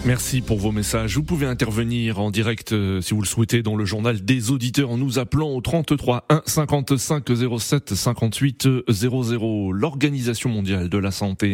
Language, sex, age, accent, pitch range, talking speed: French, male, 30-49, French, 105-135 Hz, 170 wpm